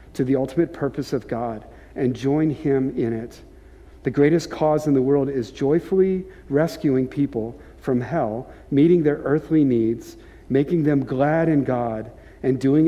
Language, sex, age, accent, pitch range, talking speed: English, male, 50-69, American, 115-140 Hz, 160 wpm